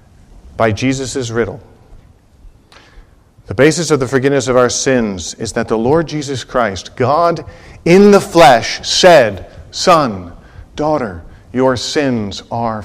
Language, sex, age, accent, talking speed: English, male, 50-69, American, 125 wpm